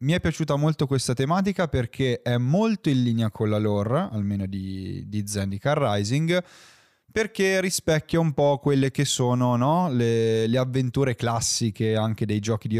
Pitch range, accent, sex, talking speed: 110-155 Hz, native, male, 165 wpm